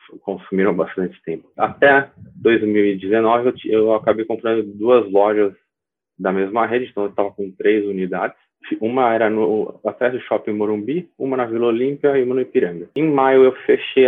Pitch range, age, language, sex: 95-125 Hz, 20-39, Portuguese, male